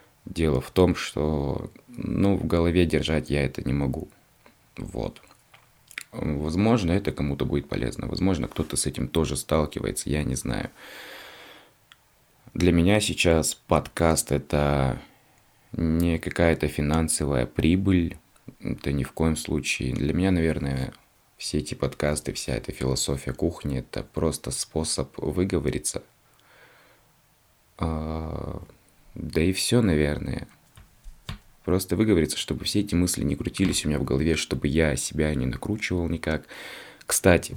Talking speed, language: 125 wpm, Russian